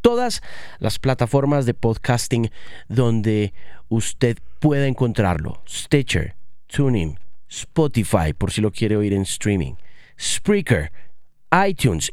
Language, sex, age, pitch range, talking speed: Spanish, male, 30-49, 125-160 Hz, 105 wpm